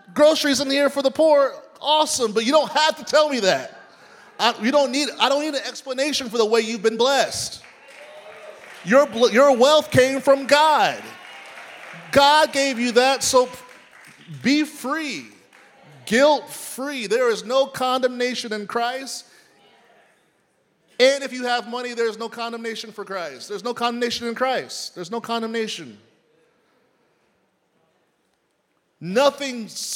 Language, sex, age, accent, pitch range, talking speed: English, male, 30-49, American, 195-280 Hz, 140 wpm